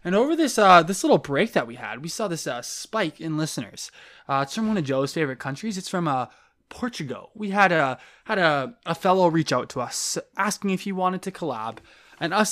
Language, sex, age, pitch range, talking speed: English, male, 20-39, 155-200 Hz, 230 wpm